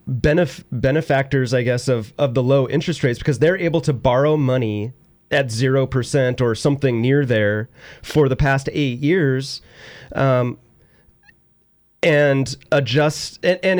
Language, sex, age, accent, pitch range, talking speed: English, male, 30-49, American, 120-155 Hz, 145 wpm